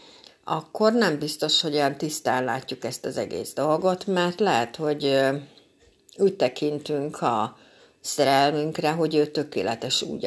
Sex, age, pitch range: female, 60-79, 135-160 Hz